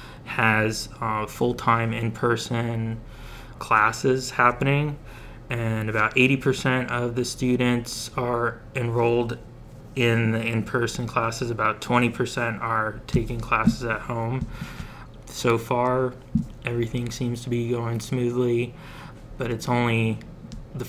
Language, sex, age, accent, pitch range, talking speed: English, male, 20-39, American, 115-125 Hz, 105 wpm